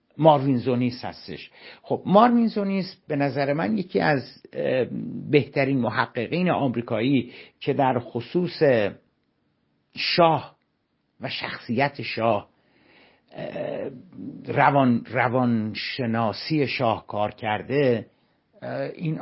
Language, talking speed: Persian, 80 wpm